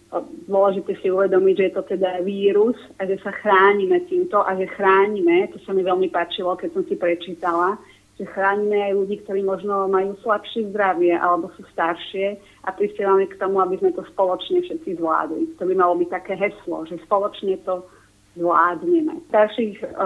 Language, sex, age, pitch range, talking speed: Slovak, female, 30-49, 180-210 Hz, 175 wpm